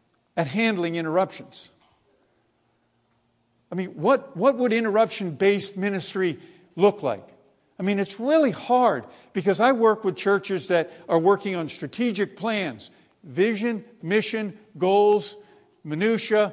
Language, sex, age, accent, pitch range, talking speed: English, male, 50-69, American, 175-225 Hz, 115 wpm